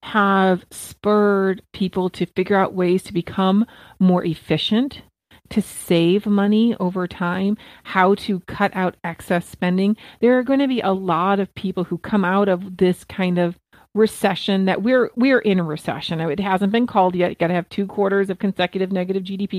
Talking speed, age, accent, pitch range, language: 185 wpm, 40-59, American, 180-220 Hz, English